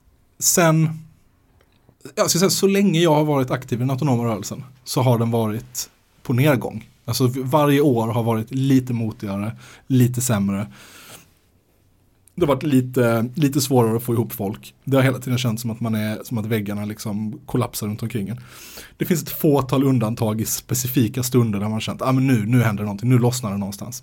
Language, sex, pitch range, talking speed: Swedish, male, 110-135 Hz, 195 wpm